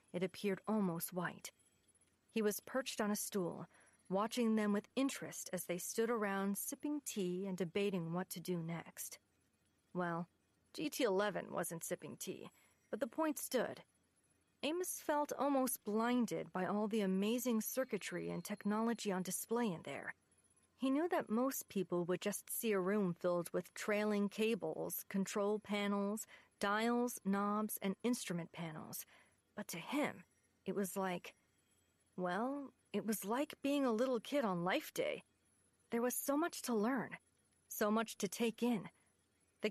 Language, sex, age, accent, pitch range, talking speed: English, female, 40-59, American, 185-240 Hz, 150 wpm